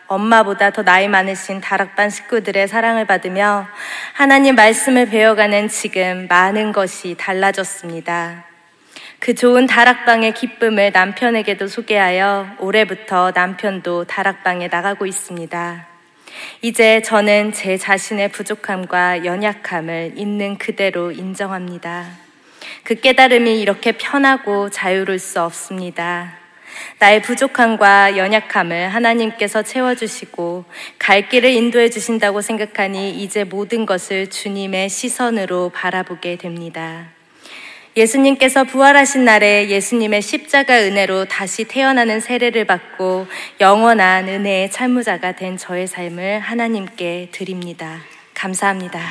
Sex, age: female, 20-39